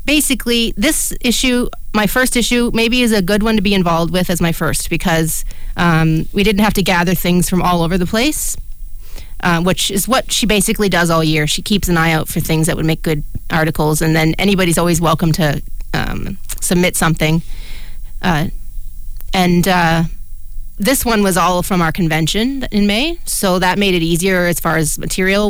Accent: American